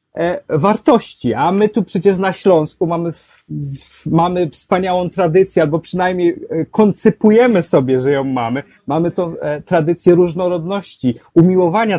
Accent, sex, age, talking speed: native, male, 30-49, 130 wpm